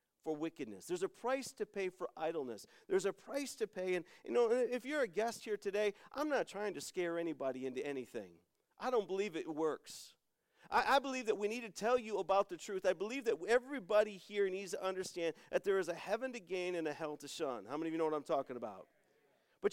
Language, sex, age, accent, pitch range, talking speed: English, male, 40-59, American, 160-245 Hz, 235 wpm